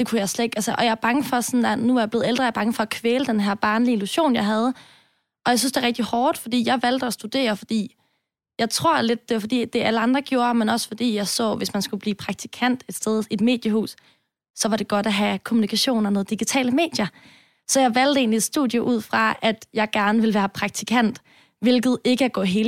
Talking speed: 260 wpm